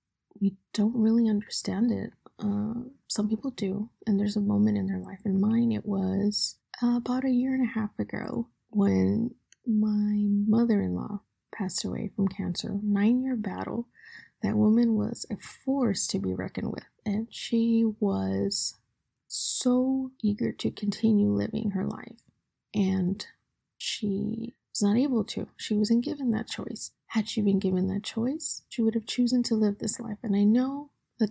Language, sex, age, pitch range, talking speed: English, female, 20-39, 200-235 Hz, 160 wpm